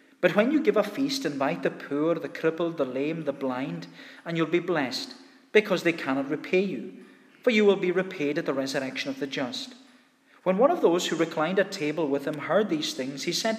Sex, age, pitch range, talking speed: male, 40-59, 150-235 Hz, 220 wpm